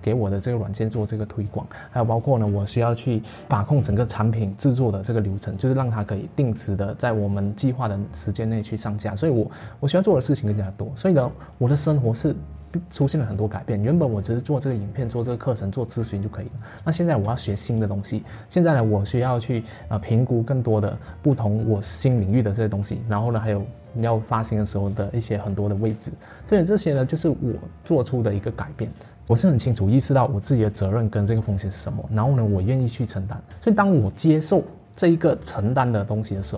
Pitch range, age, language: 105-125 Hz, 20-39, Chinese